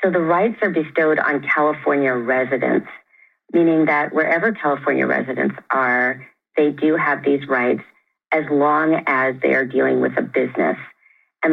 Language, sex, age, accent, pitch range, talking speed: English, female, 40-59, American, 130-160 Hz, 150 wpm